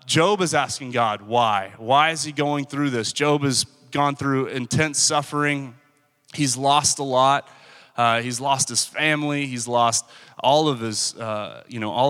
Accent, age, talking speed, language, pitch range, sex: American, 30-49, 175 wpm, English, 120-145 Hz, male